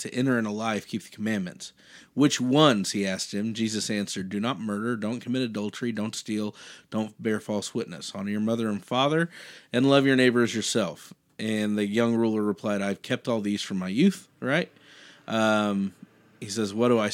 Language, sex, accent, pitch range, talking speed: English, male, American, 105-135 Hz, 205 wpm